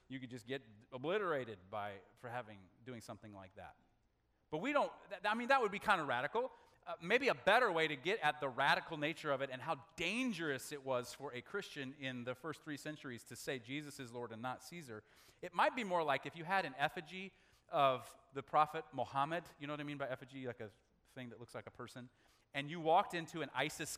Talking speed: 235 wpm